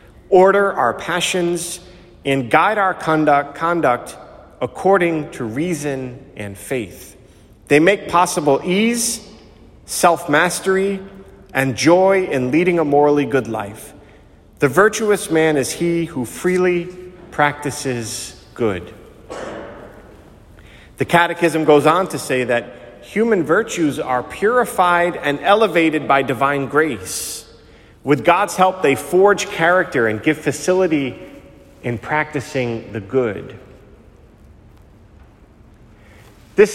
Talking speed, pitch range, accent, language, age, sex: 105 wpm, 115-175 Hz, American, English, 40-59, male